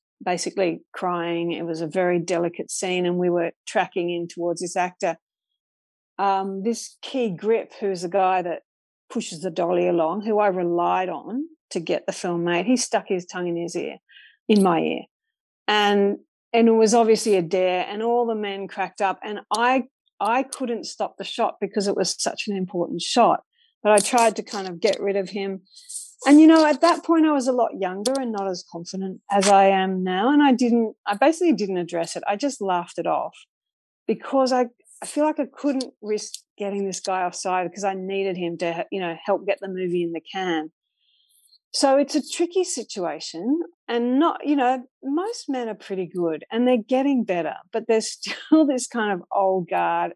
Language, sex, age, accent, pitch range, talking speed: English, female, 50-69, Australian, 180-245 Hz, 195 wpm